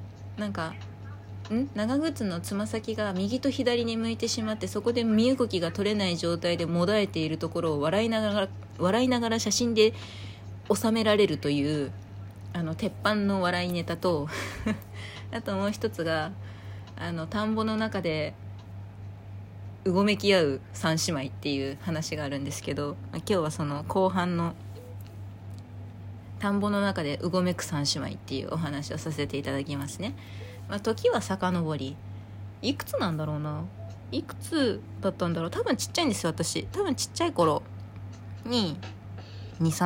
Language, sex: Japanese, female